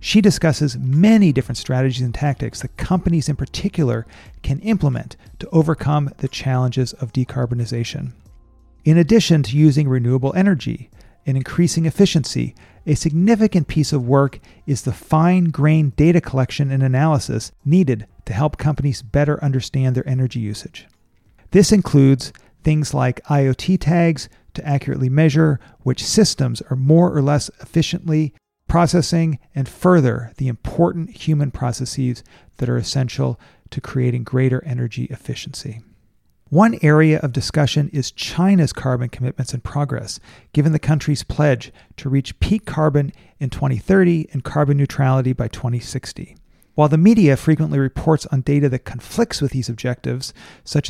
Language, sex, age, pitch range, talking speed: English, male, 40-59, 125-155 Hz, 140 wpm